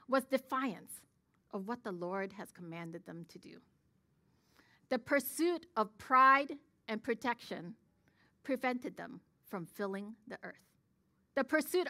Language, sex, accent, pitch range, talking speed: English, female, American, 200-280 Hz, 125 wpm